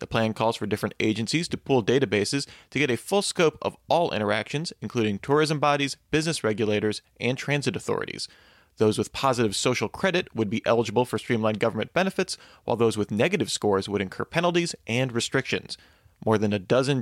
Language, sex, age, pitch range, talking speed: English, male, 30-49, 105-135 Hz, 180 wpm